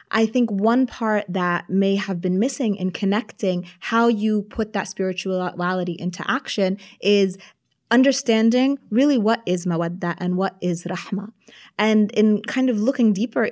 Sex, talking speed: female, 150 wpm